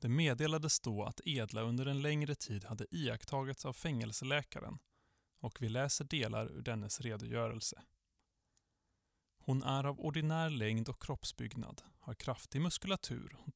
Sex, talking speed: male, 135 wpm